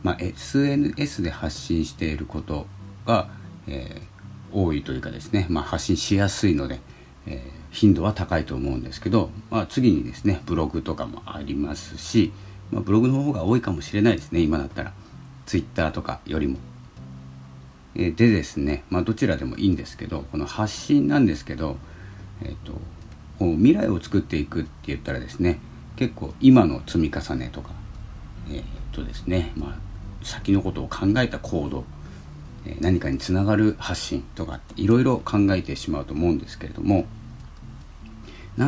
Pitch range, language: 75-105 Hz, Japanese